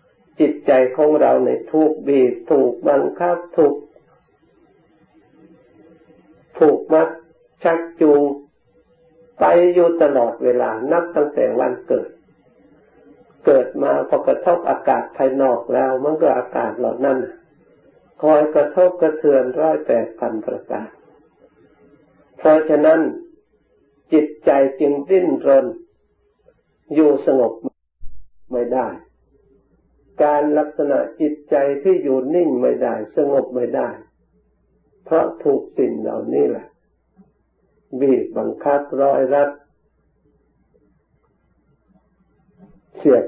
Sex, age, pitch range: male, 60-79, 140-180 Hz